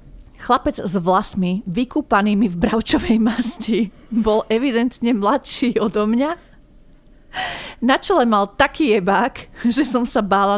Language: Slovak